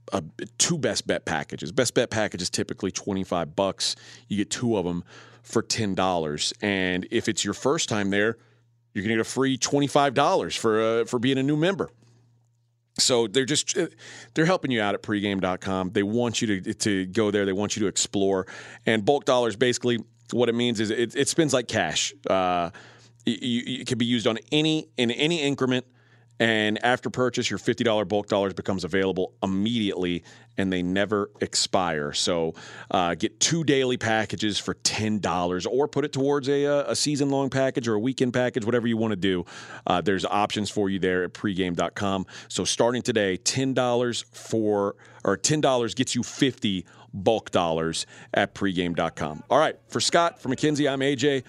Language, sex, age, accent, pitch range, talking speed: English, male, 40-59, American, 100-125 Hz, 185 wpm